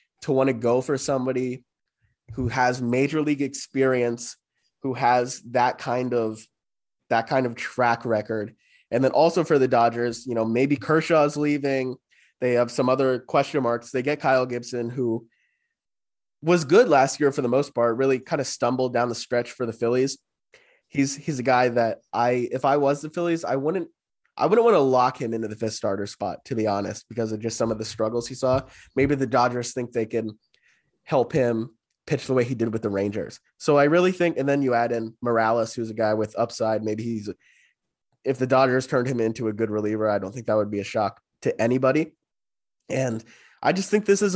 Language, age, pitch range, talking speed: English, 20-39, 115-140 Hz, 210 wpm